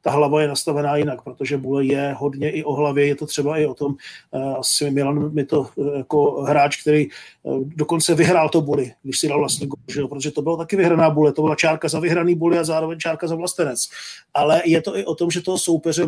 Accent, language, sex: native, Czech, male